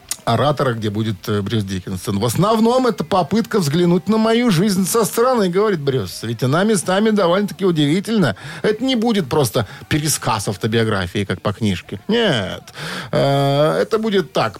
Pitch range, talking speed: 110-180 Hz, 150 wpm